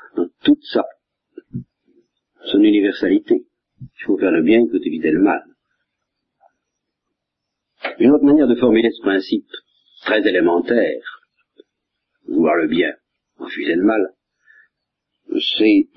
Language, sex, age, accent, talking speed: French, male, 50-69, French, 110 wpm